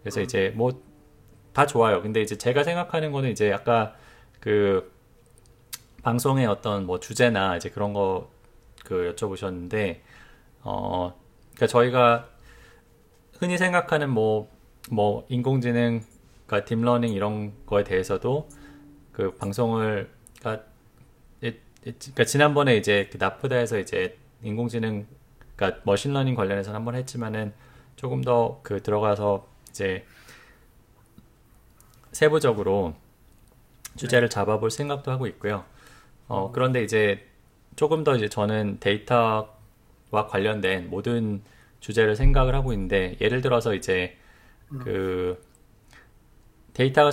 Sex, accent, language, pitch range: male, native, Korean, 100-125 Hz